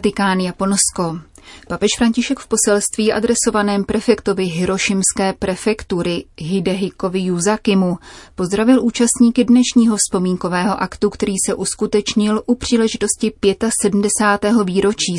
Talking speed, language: 90 wpm, Czech